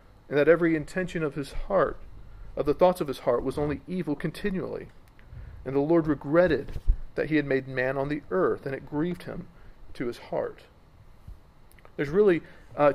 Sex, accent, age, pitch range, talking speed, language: male, American, 40-59, 130-160 Hz, 180 wpm, English